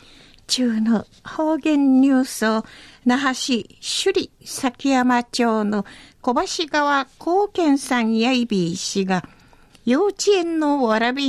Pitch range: 200-300 Hz